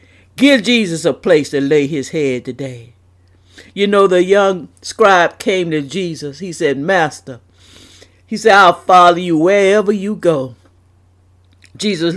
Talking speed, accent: 145 wpm, American